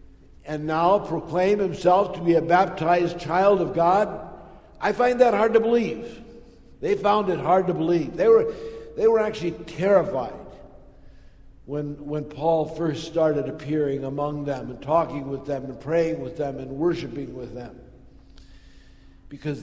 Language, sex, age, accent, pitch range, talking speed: English, male, 60-79, American, 125-185 Hz, 150 wpm